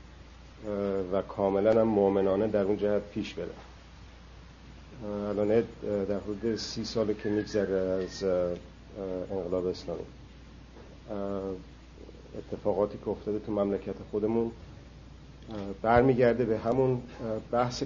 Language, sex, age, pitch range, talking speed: Persian, male, 50-69, 95-110 Hz, 95 wpm